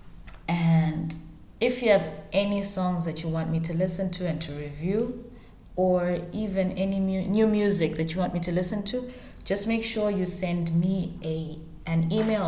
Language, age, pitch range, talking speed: English, 20-39, 160-205 Hz, 185 wpm